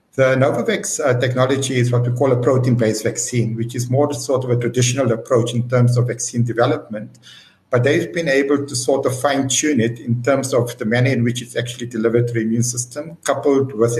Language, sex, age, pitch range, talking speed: English, male, 60-79, 120-130 Hz, 205 wpm